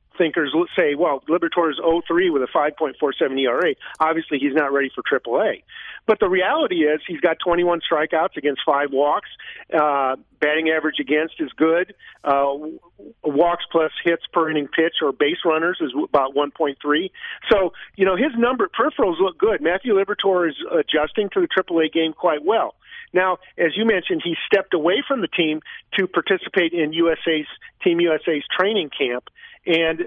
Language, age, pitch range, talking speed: English, 50-69, 150-190 Hz, 170 wpm